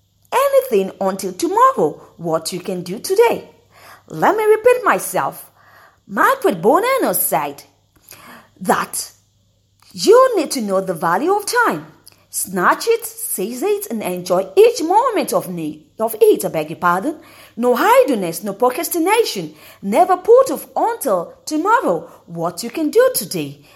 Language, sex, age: English, female, 40-59